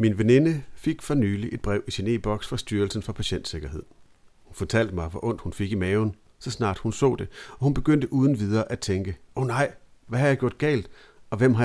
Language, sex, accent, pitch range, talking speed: Danish, male, native, 100-130 Hz, 230 wpm